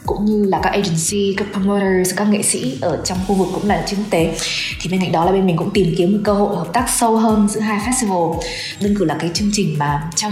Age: 20-39